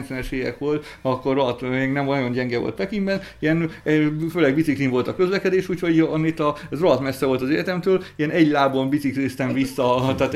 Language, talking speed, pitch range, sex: Hungarian, 175 wpm, 125-160 Hz, male